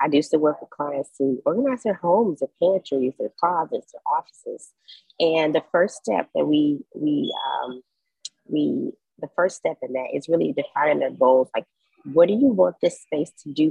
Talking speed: 195 wpm